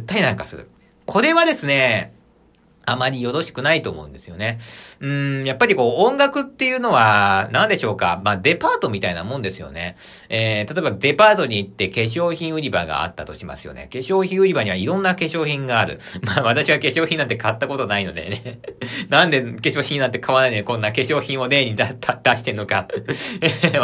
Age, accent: 40-59, native